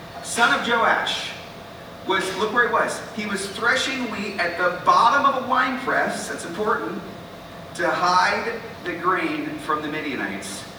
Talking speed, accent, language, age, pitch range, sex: 155 wpm, American, English, 40-59, 165-220 Hz, male